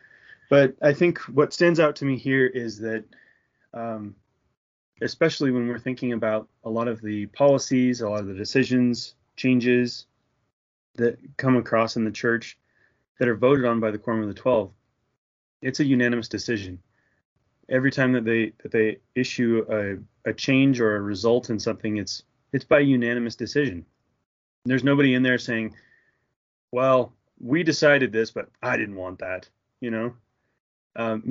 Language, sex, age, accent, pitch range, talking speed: English, male, 30-49, American, 110-130 Hz, 165 wpm